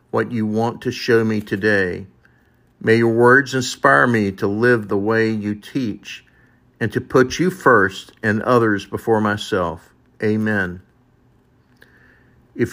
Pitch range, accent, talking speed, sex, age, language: 105-125 Hz, American, 135 wpm, male, 50-69, English